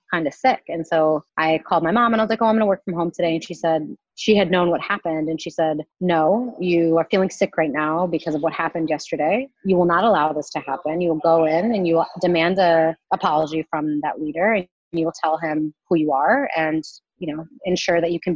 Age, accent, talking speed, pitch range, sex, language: 30-49, American, 260 wpm, 160-180 Hz, female, English